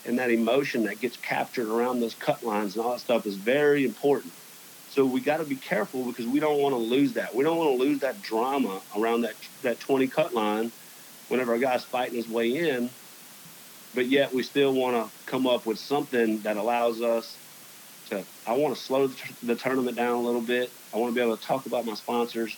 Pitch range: 115-140 Hz